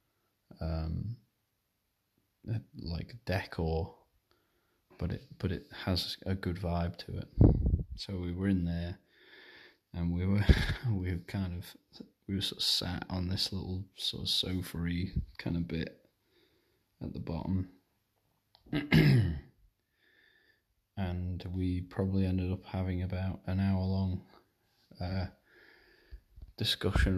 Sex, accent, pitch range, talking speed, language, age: male, British, 85-100 Hz, 120 wpm, English, 20-39